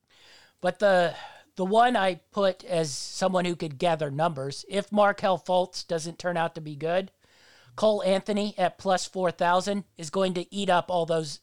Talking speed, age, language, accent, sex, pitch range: 175 wpm, 40-59, English, American, male, 165-195 Hz